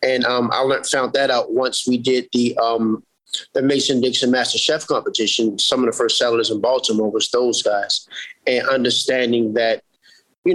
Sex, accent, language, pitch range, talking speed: male, American, English, 115-135 Hz, 180 wpm